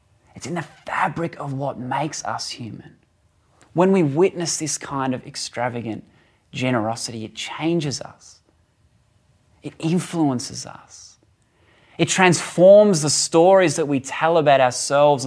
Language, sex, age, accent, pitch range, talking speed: English, male, 20-39, Australian, 120-165 Hz, 125 wpm